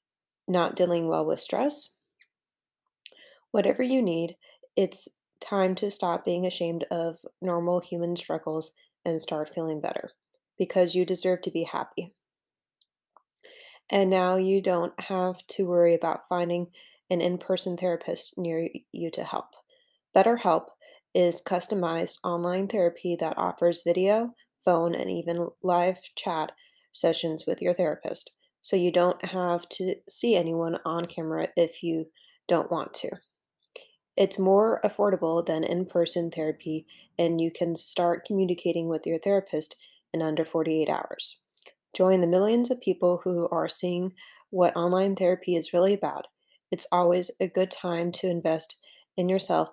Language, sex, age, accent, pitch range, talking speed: English, female, 20-39, American, 170-190 Hz, 140 wpm